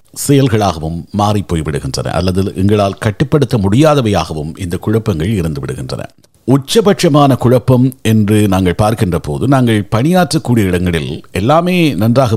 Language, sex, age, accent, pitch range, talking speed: Tamil, male, 50-69, native, 95-135 Hz, 100 wpm